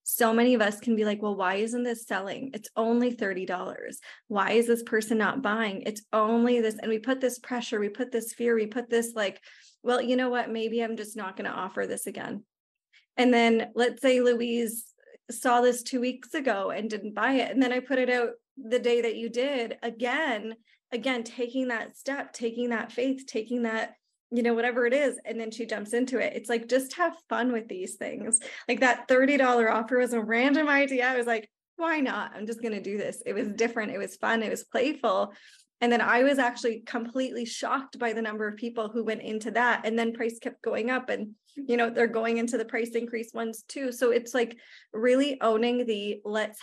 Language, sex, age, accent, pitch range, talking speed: English, female, 20-39, American, 225-250 Hz, 220 wpm